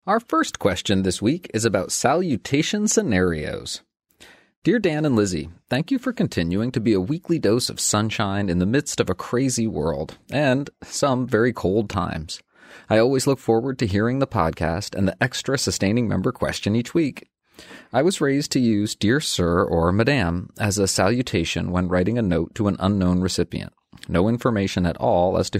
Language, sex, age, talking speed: English, male, 30-49, 185 wpm